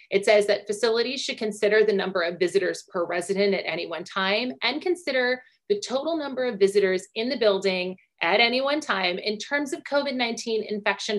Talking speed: 190 wpm